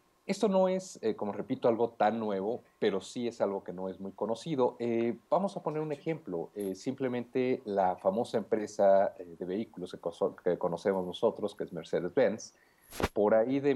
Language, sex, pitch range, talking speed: English, male, 95-135 Hz, 190 wpm